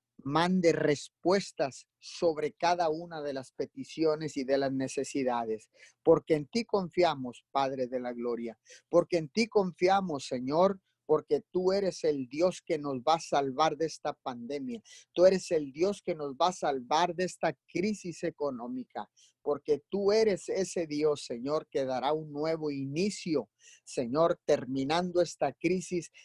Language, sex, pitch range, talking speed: Spanish, male, 140-170 Hz, 150 wpm